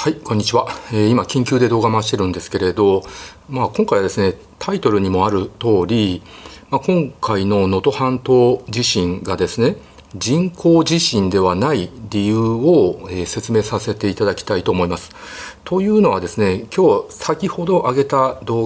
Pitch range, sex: 100-150 Hz, male